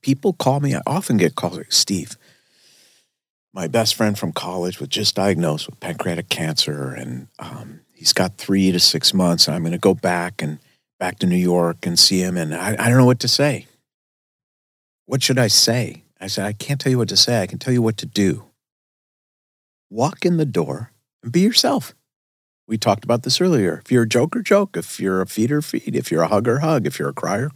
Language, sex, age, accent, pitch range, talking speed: English, male, 50-69, American, 100-145 Hz, 220 wpm